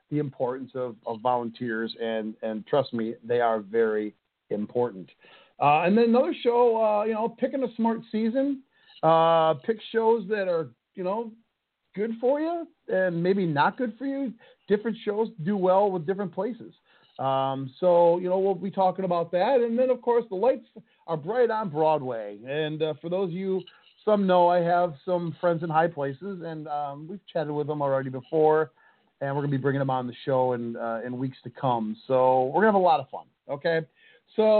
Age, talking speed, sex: 40-59, 205 wpm, male